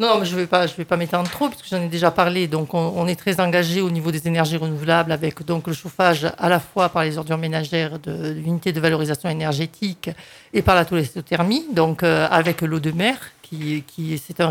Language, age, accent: French, 50-69, French